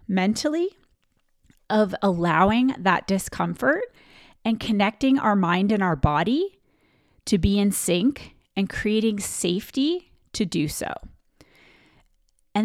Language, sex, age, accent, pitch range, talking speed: English, female, 30-49, American, 195-255 Hz, 110 wpm